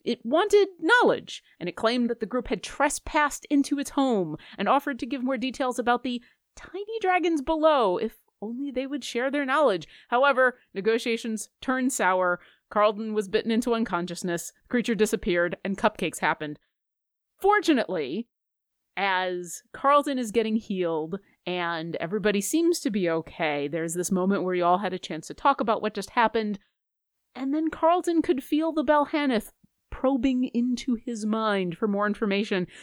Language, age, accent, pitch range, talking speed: English, 30-49, American, 200-280 Hz, 160 wpm